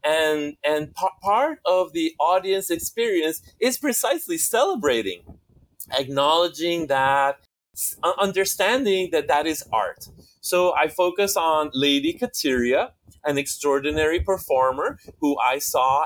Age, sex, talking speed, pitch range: 30-49, male, 110 wpm, 140-225 Hz